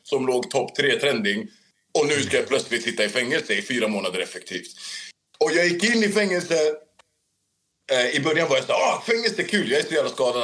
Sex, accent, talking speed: male, native, 215 wpm